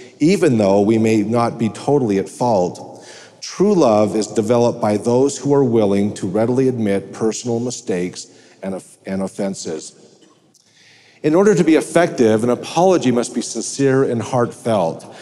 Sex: male